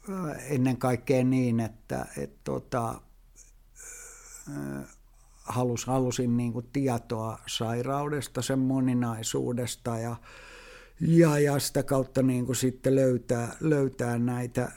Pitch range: 115-135 Hz